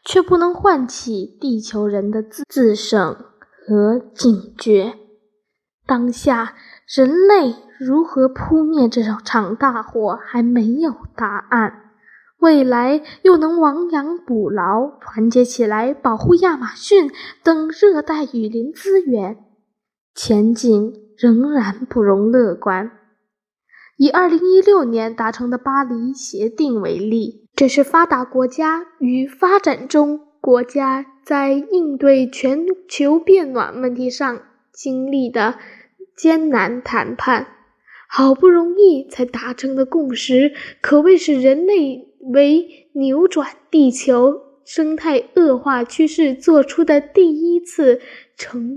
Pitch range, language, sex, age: 235-310 Hz, Chinese, female, 10-29